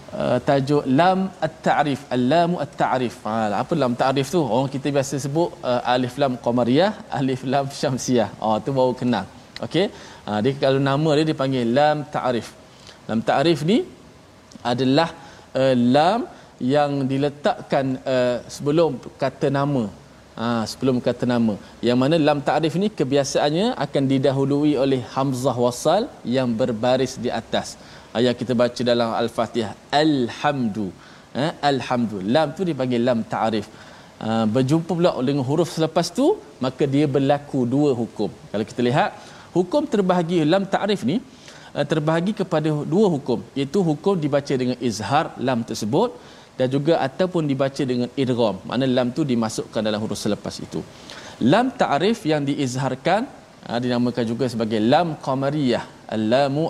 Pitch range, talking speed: 120-155 Hz, 145 wpm